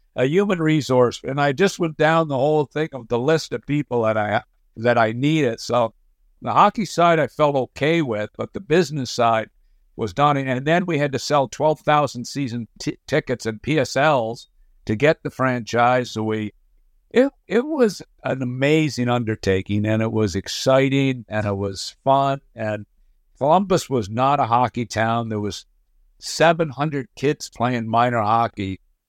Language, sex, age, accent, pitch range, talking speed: English, male, 60-79, American, 110-145 Hz, 165 wpm